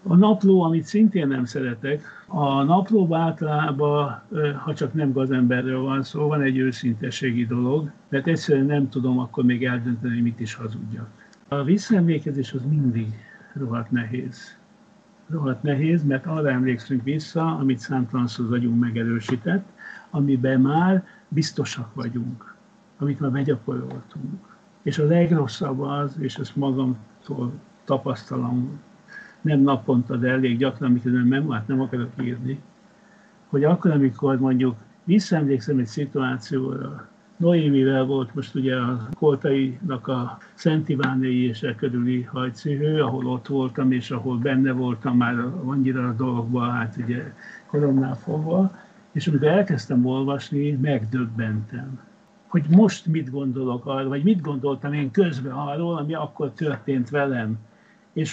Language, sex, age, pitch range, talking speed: Hungarian, male, 60-79, 125-160 Hz, 130 wpm